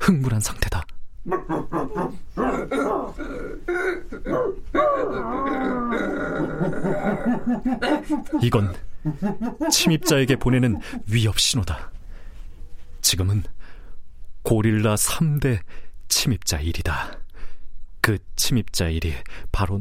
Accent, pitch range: native, 85-135 Hz